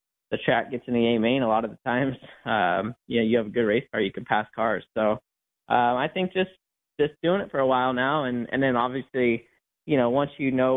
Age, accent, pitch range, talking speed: 20-39, American, 110-130 Hz, 255 wpm